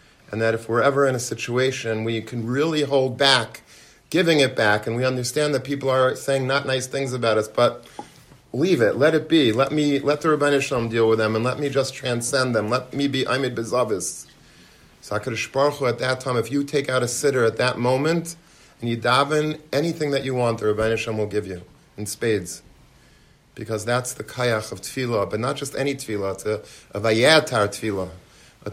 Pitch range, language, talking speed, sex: 110-140 Hz, English, 205 wpm, male